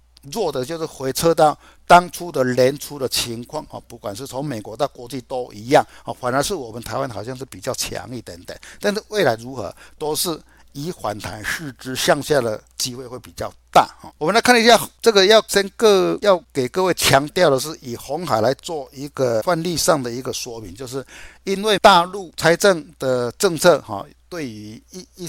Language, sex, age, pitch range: Chinese, male, 60-79, 120-165 Hz